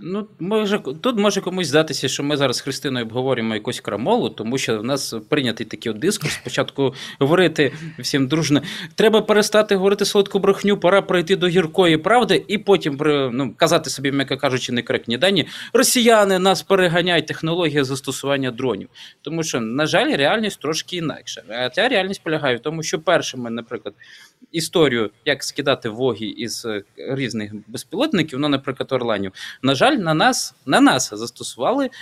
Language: Ukrainian